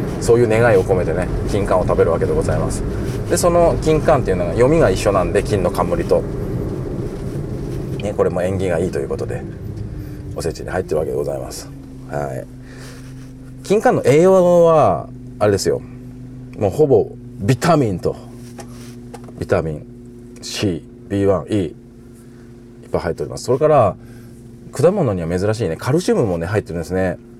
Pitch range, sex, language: 90-125 Hz, male, Japanese